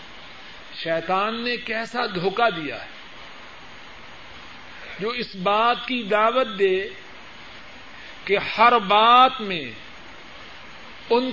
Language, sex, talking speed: Urdu, male, 90 wpm